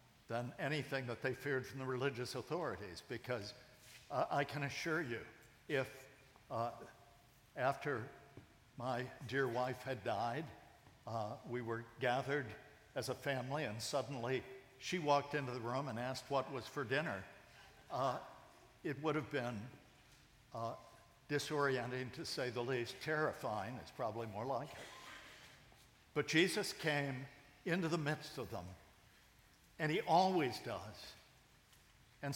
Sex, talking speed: male, 135 wpm